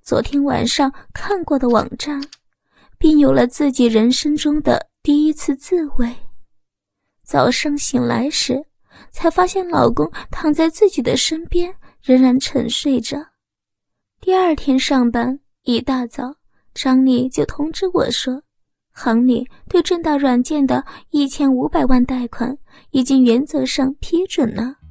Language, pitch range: Chinese, 245-295 Hz